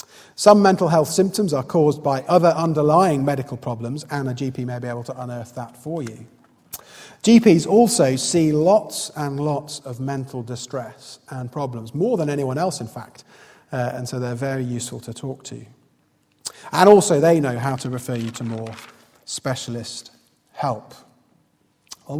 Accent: British